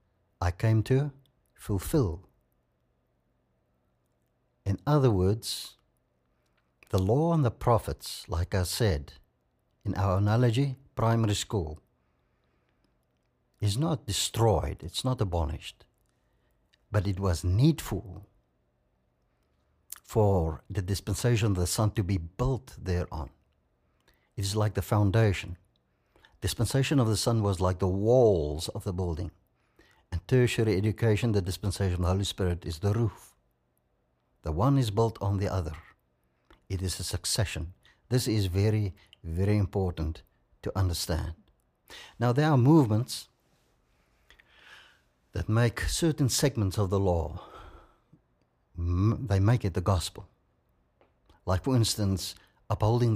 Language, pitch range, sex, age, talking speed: English, 85-110 Hz, male, 60-79, 120 wpm